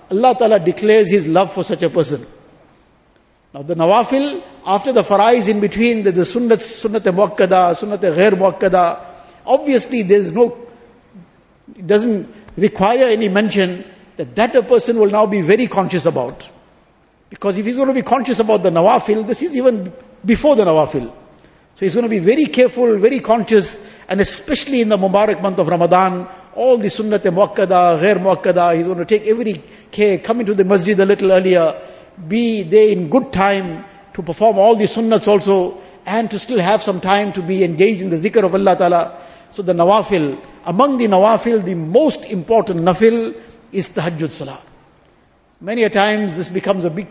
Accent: Indian